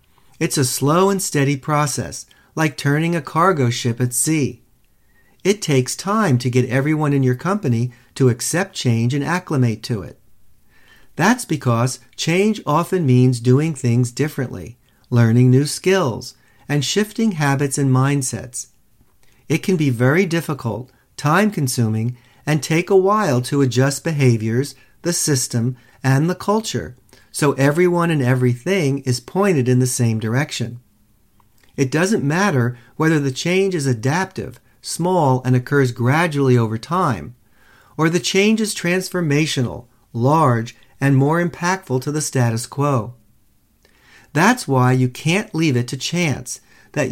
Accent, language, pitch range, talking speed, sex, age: American, English, 125-160 Hz, 140 wpm, male, 50-69